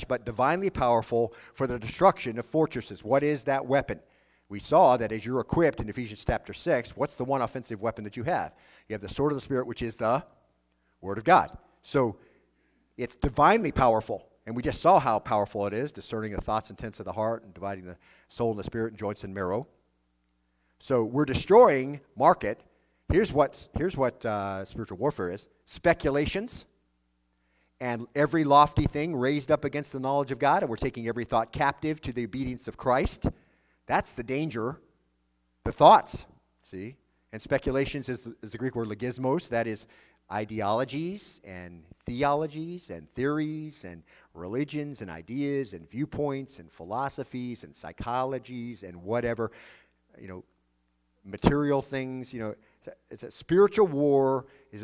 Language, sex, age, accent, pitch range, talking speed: English, male, 50-69, American, 100-140 Hz, 170 wpm